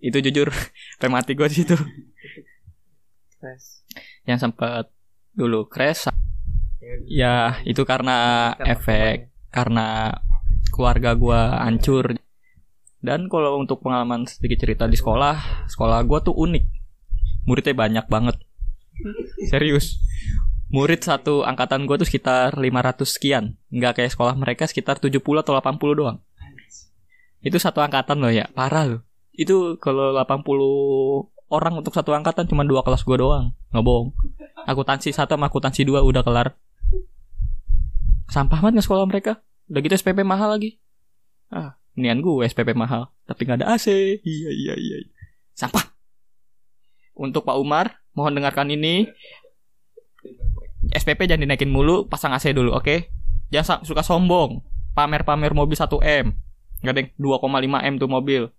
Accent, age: native, 20-39